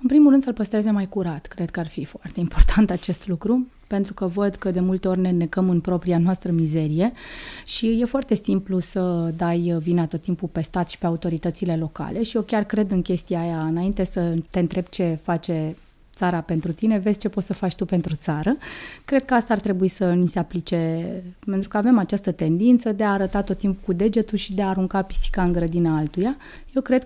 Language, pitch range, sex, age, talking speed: English, 175-215 Hz, female, 20-39, 215 wpm